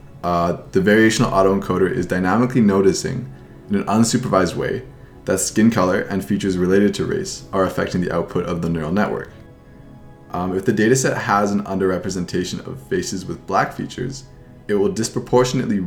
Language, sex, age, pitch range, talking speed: English, male, 20-39, 95-120 Hz, 160 wpm